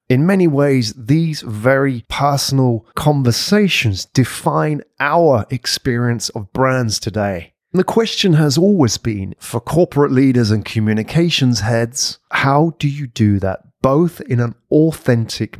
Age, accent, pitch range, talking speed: 30-49, British, 115-150 Hz, 125 wpm